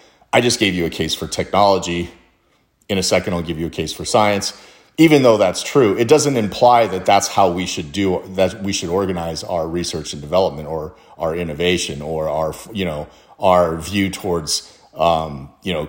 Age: 40-59